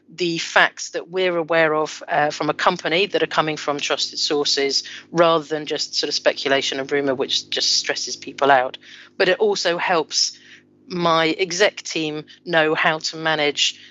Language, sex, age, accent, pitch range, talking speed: English, female, 40-59, British, 150-180 Hz, 175 wpm